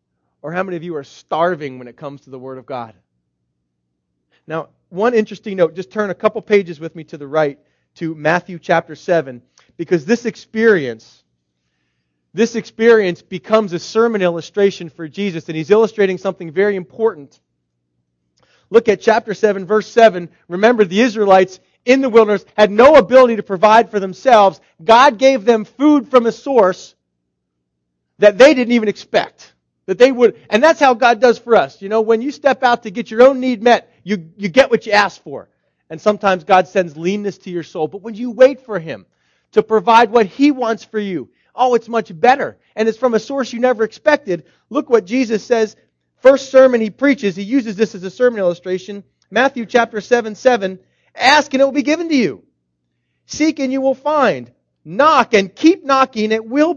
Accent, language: American, English